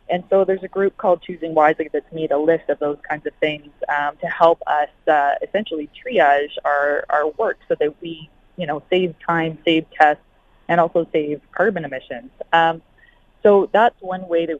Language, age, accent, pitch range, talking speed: English, 20-39, American, 155-180 Hz, 195 wpm